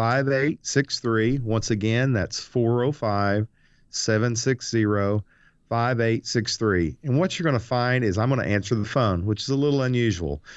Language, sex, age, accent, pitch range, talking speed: English, male, 40-59, American, 95-115 Hz, 140 wpm